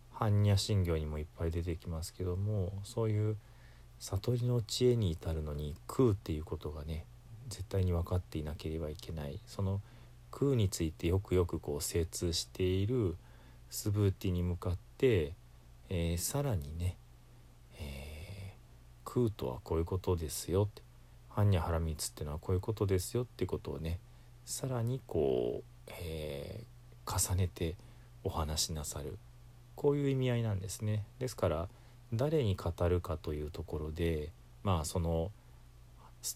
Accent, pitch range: native, 80-120 Hz